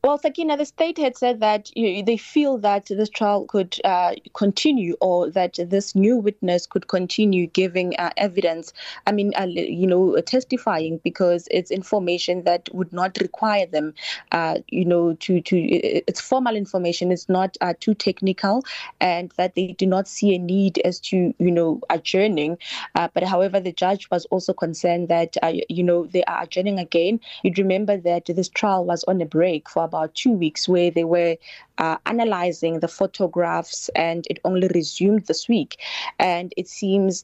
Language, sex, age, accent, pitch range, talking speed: English, female, 20-39, South African, 165-195 Hz, 180 wpm